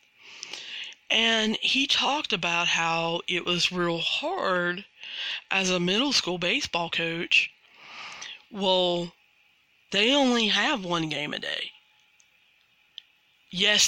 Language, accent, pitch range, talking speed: English, American, 175-220 Hz, 105 wpm